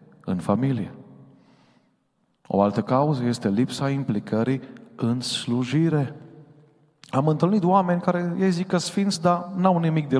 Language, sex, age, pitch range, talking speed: Romanian, male, 40-59, 110-140 Hz, 130 wpm